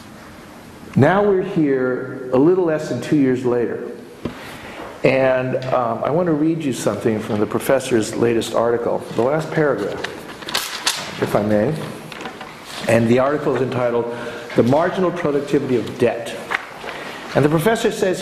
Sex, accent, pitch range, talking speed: male, American, 125-160 Hz, 140 wpm